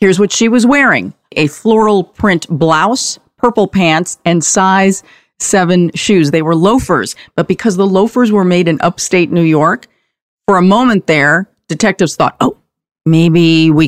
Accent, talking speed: American, 160 wpm